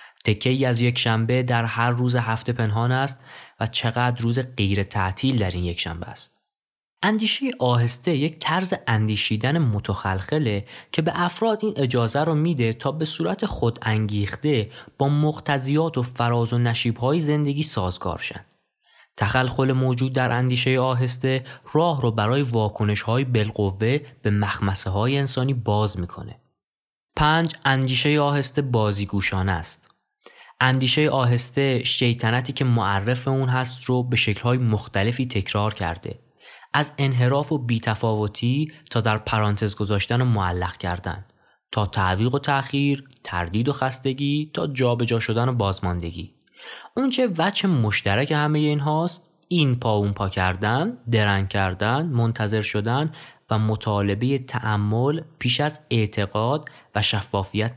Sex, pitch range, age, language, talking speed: male, 105-140 Hz, 20-39, Persian, 135 wpm